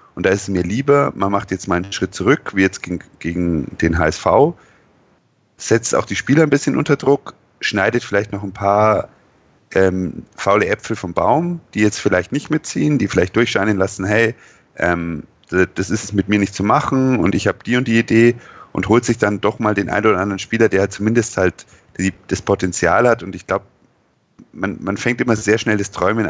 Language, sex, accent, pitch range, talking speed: German, male, German, 95-110 Hz, 210 wpm